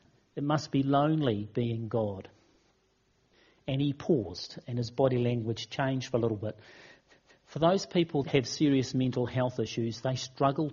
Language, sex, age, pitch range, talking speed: English, male, 40-59, 120-160 Hz, 160 wpm